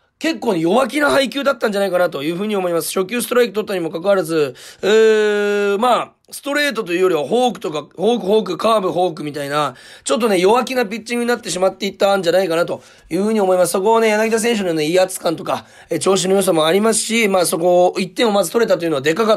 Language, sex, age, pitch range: Japanese, male, 30-49, 175-240 Hz